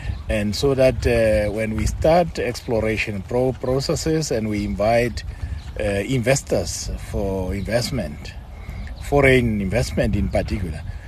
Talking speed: 110 wpm